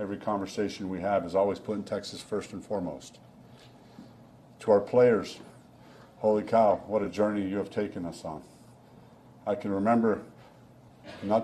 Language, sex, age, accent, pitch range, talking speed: English, male, 50-69, American, 100-120 Hz, 150 wpm